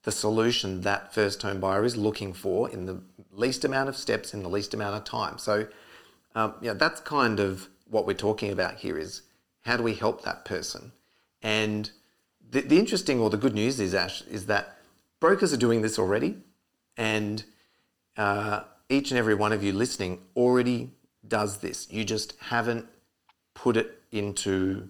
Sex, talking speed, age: male, 180 wpm, 40-59